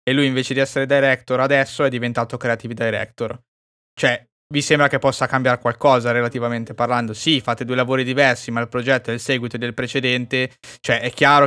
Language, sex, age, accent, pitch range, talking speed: Italian, male, 20-39, native, 115-135 Hz, 190 wpm